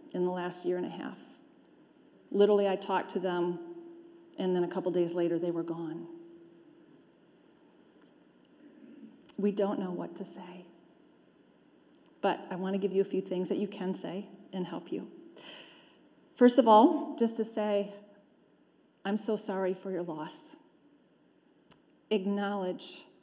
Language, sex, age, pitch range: English, female, 40-59, 185-285 Hz